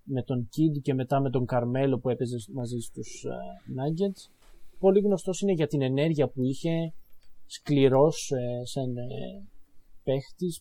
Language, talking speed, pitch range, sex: Greek, 155 wpm, 125-165 Hz, male